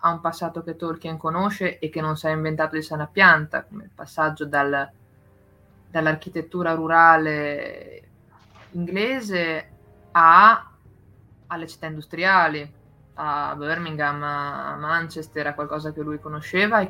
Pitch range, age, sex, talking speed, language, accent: 140-170 Hz, 20-39, female, 125 wpm, Italian, native